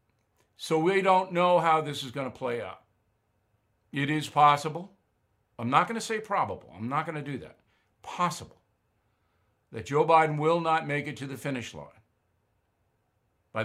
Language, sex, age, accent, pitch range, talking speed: English, male, 60-79, American, 115-170 Hz, 170 wpm